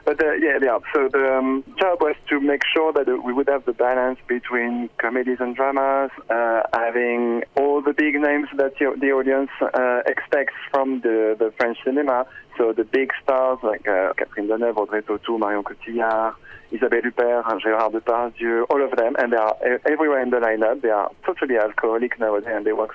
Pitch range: 115-135 Hz